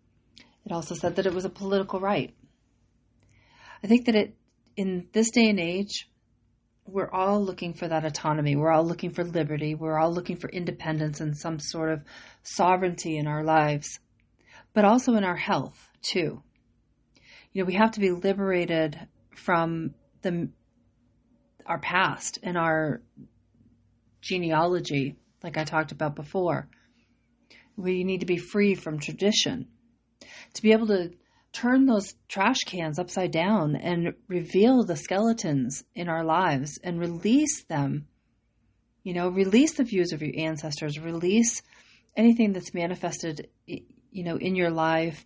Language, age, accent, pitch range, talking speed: English, 40-59, American, 150-185 Hz, 145 wpm